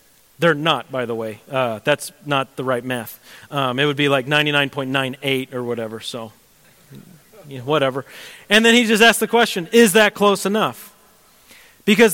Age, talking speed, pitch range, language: 40-59, 175 wpm, 150-220 Hz, English